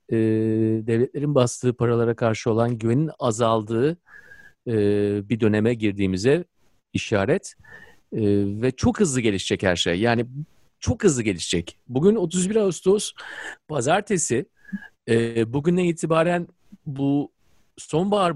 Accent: native